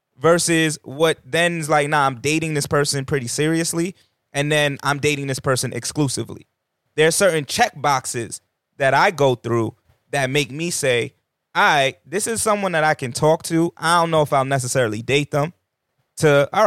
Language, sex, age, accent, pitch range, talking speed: English, male, 20-39, American, 135-165 Hz, 185 wpm